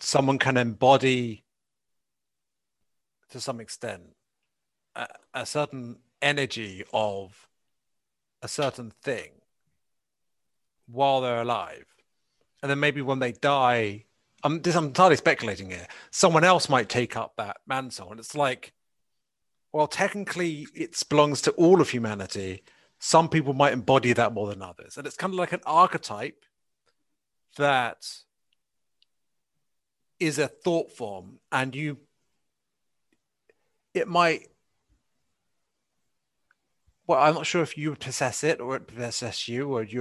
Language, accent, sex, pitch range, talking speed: English, British, male, 120-150 Hz, 125 wpm